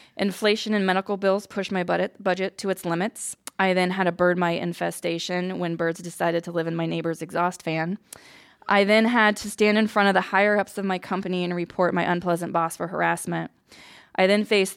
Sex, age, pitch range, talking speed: female, 20-39, 175-210 Hz, 205 wpm